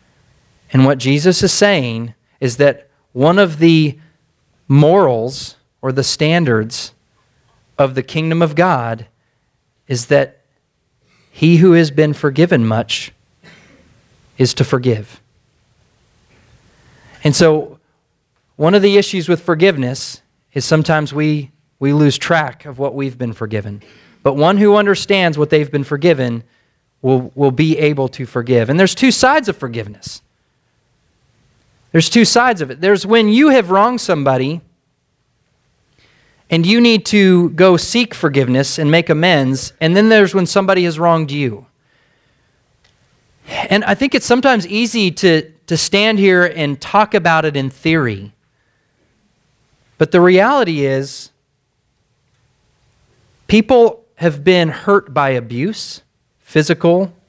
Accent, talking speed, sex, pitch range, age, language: American, 130 wpm, male, 130-175 Hz, 30-49, English